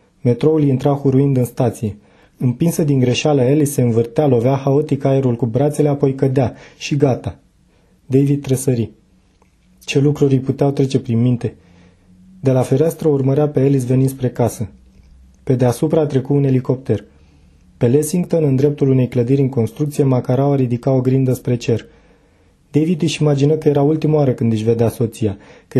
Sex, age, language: male, 20-39, Romanian